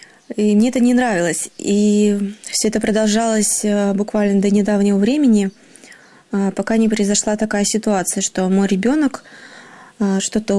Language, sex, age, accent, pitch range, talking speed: Ukrainian, female, 20-39, native, 200-230 Hz, 125 wpm